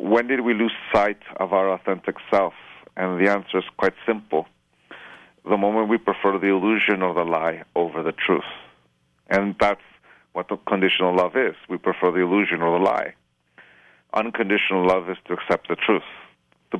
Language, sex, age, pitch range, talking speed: English, male, 50-69, 90-100 Hz, 175 wpm